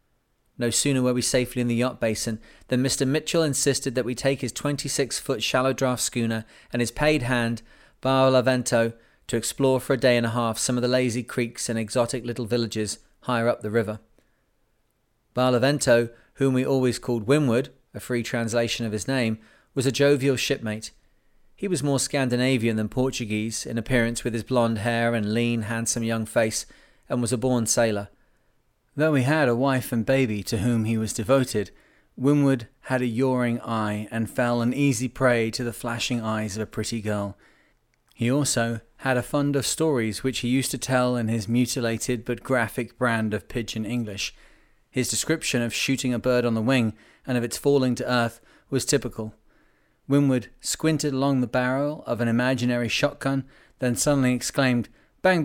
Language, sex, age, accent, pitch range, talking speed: English, male, 30-49, British, 115-135 Hz, 180 wpm